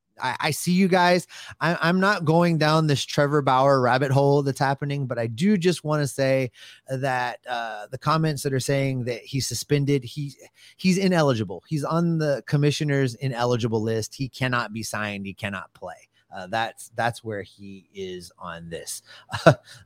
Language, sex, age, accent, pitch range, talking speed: English, male, 30-49, American, 115-150 Hz, 175 wpm